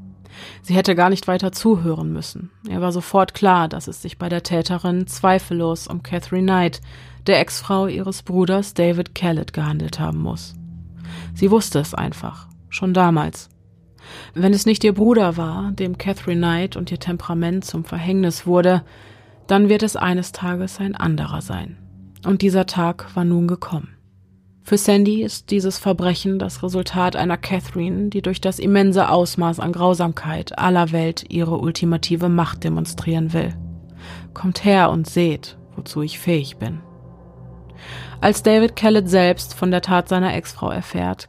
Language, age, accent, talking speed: German, 30-49, German, 155 wpm